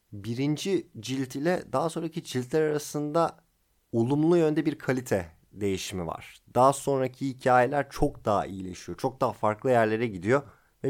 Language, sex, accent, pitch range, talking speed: Turkish, male, native, 105-155 Hz, 140 wpm